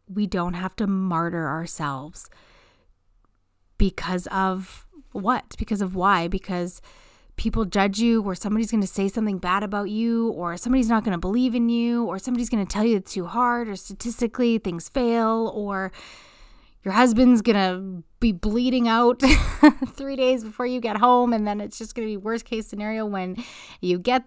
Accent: American